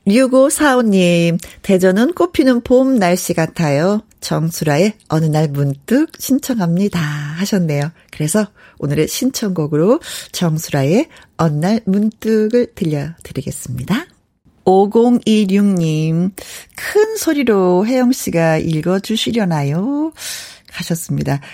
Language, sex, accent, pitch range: Korean, female, native, 165-240 Hz